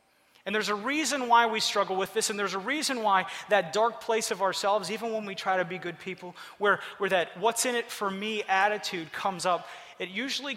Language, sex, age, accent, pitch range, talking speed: English, male, 30-49, American, 180-230 Hz, 205 wpm